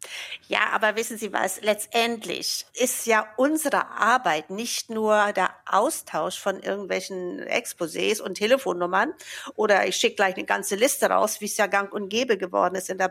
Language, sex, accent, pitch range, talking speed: German, female, German, 205-270 Hz, 170 wpm